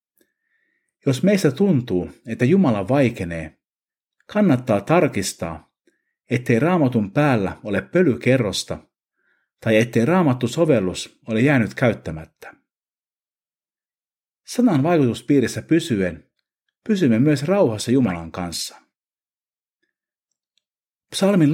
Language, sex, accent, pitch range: Finnish, male, native, 95-155 Hz